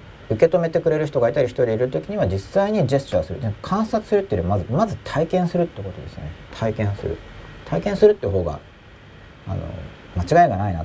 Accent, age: native, 40-59